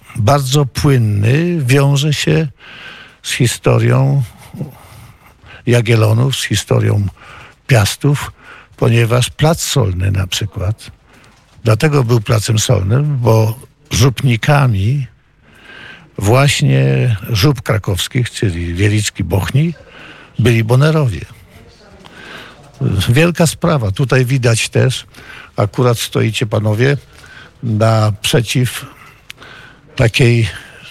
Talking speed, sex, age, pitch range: 75 wpm, male, 60-79, 110-135 Hz